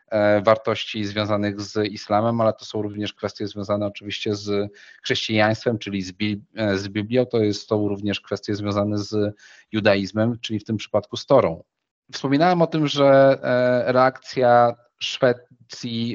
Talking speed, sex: 135 wpm, male